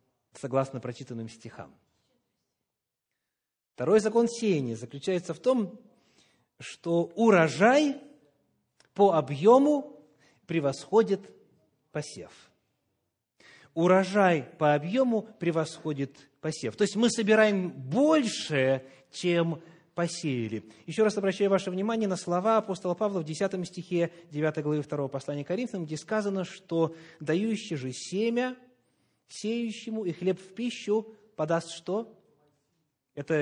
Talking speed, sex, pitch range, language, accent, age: 105 wpm, male, 135-210 Hz, Russian, native, 30-49